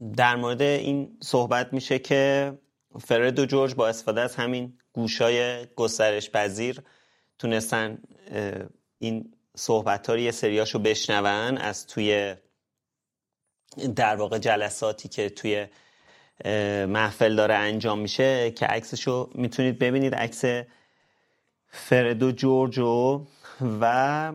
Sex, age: male, 30-49